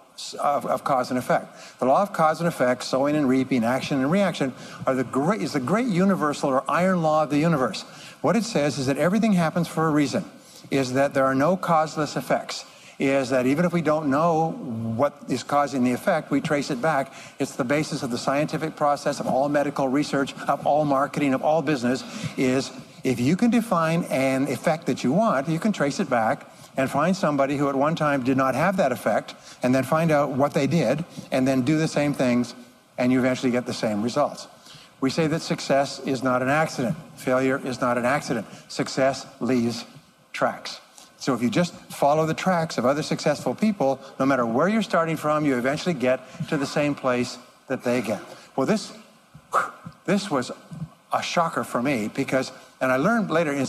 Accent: American